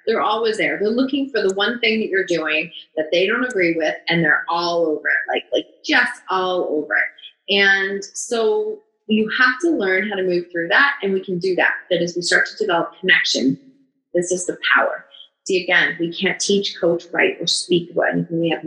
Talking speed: 215 wpm